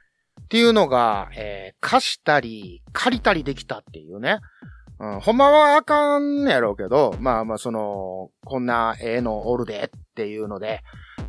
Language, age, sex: Japanese, 30-49, male